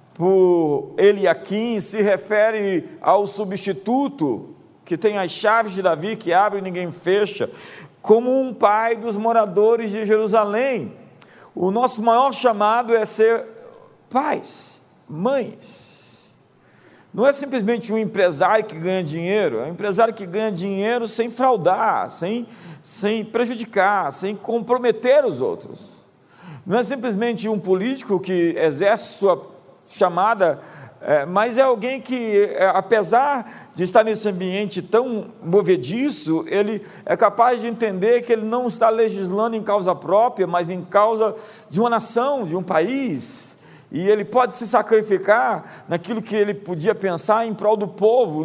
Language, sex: Portuguese, male